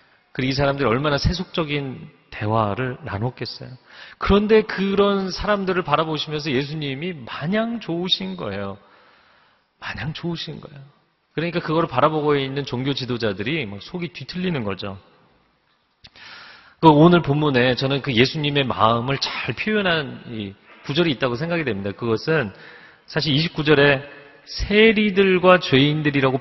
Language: Korean